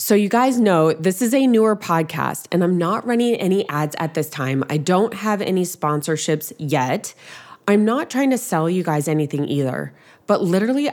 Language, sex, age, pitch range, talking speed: English, female, 20-39, 150-205 Hz, 190 wpm